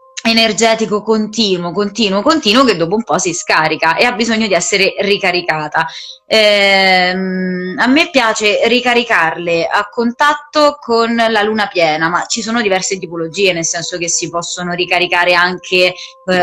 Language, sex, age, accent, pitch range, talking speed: Italian, female, 20-39, native, 175-220 Hz, 145 wpm